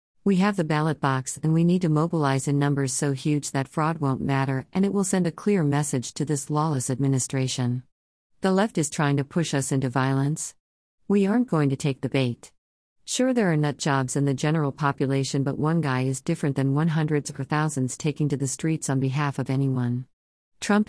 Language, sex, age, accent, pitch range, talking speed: English, female, 50-69, American, 130-155 Hz, 210 wpm